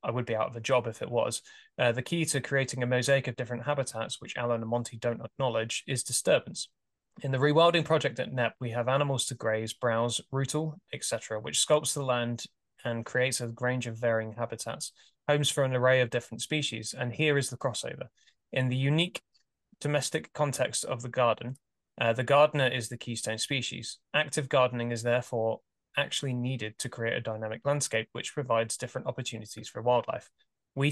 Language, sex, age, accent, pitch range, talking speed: English, male, 10-29, British, 115-140 Hz, 190 wpm